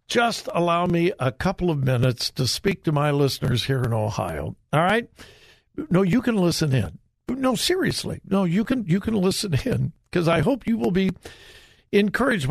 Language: English